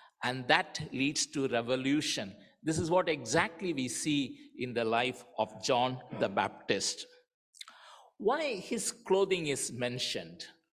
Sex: male